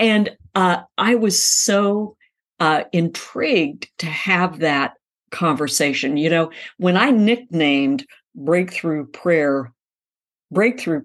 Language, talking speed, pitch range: English, 105 wpm, 150-180 Hz